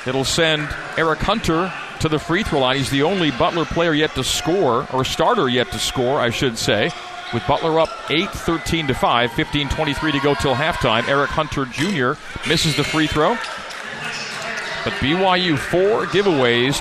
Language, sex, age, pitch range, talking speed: English, male, 40-59, 135-160 Hz, 170 wpm